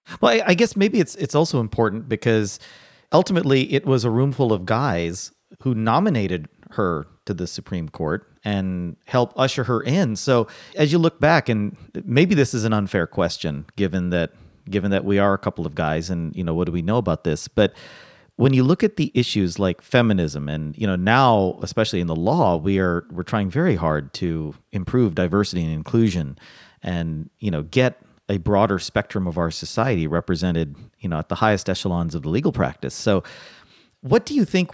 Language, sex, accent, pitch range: English, male, American, 90-125 Hz